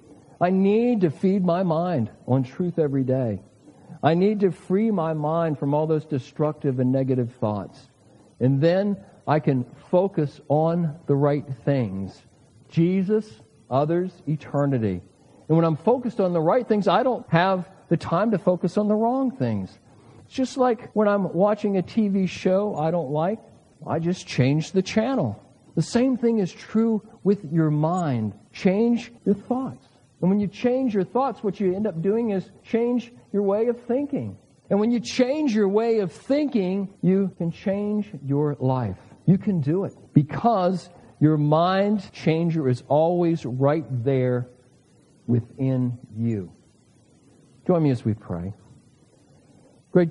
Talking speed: 160 wpm